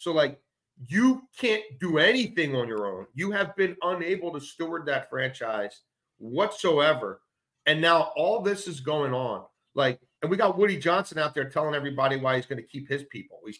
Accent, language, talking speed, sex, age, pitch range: American, English, 190 wpm, male, 40-59, 130-180 Hz